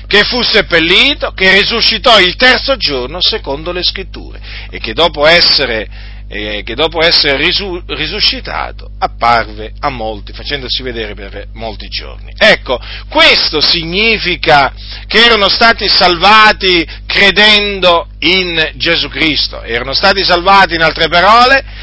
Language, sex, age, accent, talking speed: Italian, male, 50-69, native, 115 wpm